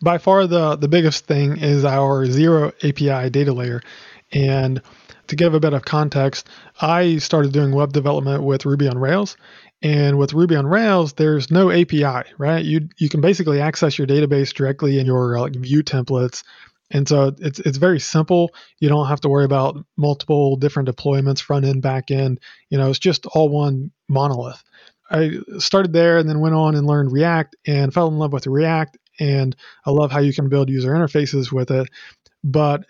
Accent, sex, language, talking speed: American, male, English, 190 wpm